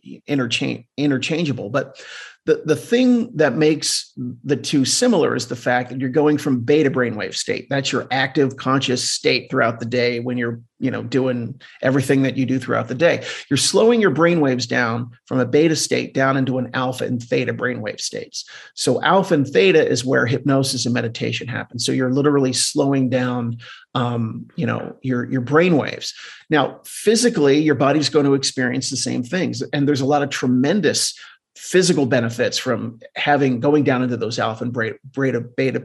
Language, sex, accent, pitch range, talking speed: English, male, American, 125-150 Hz, 180 wpm